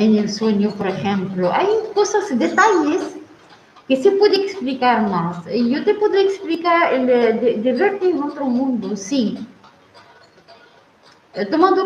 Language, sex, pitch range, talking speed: Spanish, female, 230-335 Hz, 130 wpm